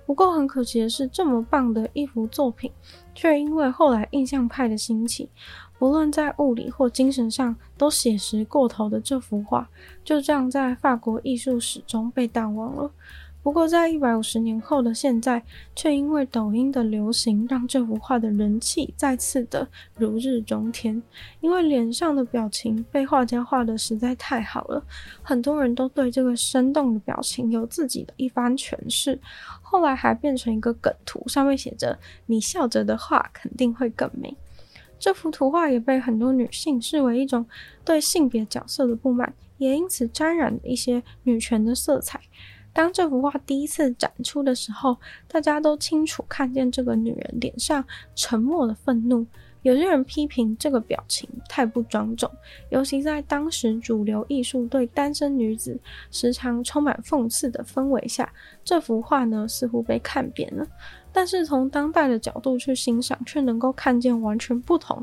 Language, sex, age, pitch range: Chinese, female, 10-29, 235-285 Hz